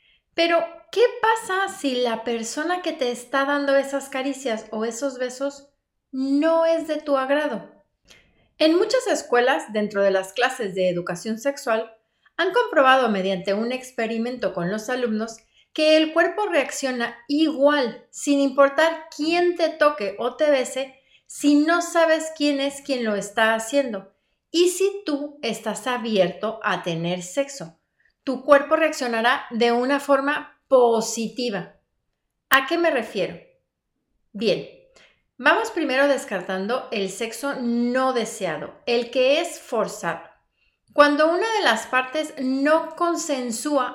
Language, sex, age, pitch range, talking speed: Spanish, female, 30-49, 230-300 Hz, 135 wpm